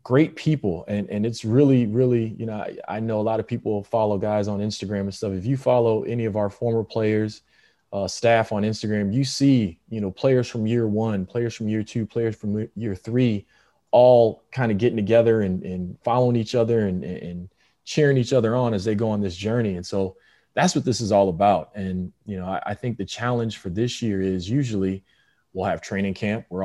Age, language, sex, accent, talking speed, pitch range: 20-39, English, male, American, 220 wpm, 95-115 Hz